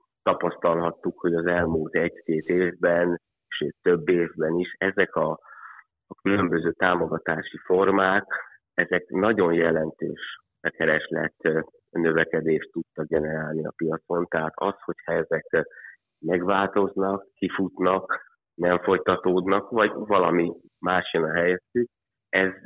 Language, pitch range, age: Hungarian, 80-90 Hz, 30-49